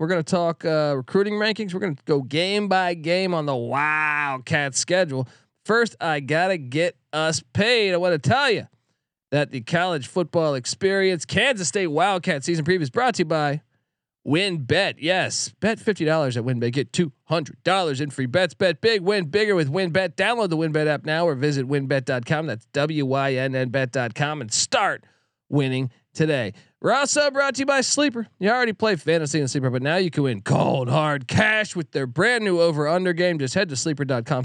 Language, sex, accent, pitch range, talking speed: English, male, American, 135-185 Hz, 195 wpm